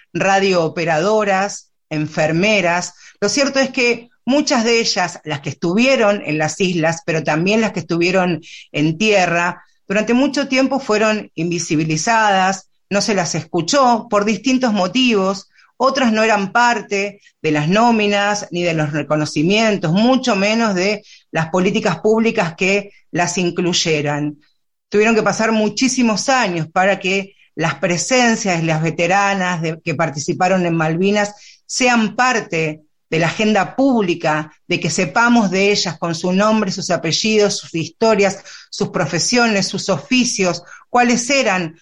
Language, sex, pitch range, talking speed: Spanish, female, 170-215 Hz, 135 wpm